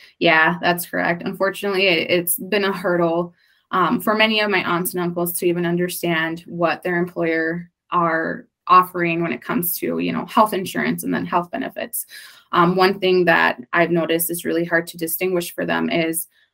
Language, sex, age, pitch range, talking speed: English, female, 20-39, 170-200 Hz, 180 wpm